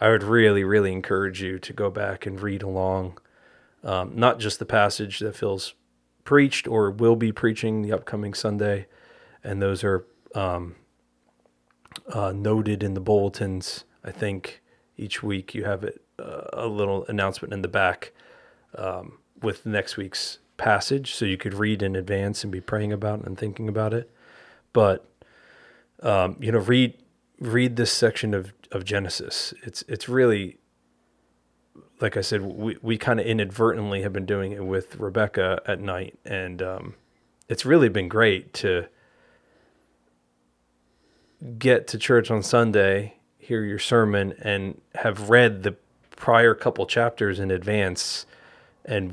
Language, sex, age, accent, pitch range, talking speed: English, male, 30-49, American, 95-110 Hz, 155 wpm